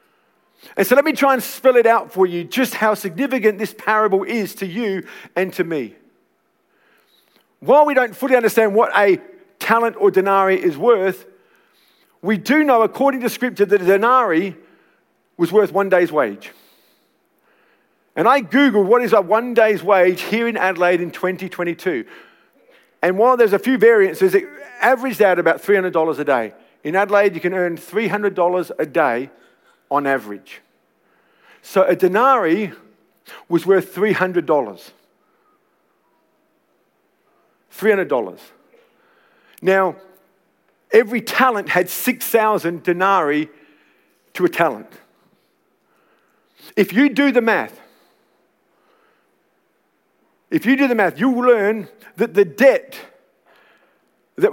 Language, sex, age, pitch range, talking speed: English, male, 50-69, 185-255 Hz, 130 wpm